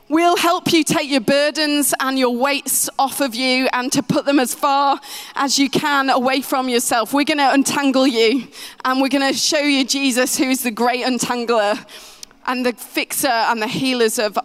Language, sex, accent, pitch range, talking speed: English, female, British, 230-280 Hz, 200 wpm